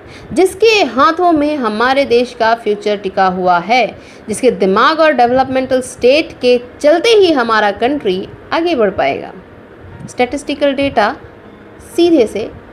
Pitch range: 230-335 Hz